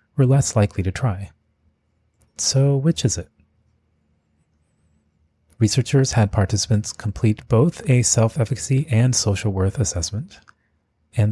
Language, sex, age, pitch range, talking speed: English, male, 30-49, 95-120 Hz, 110 wpm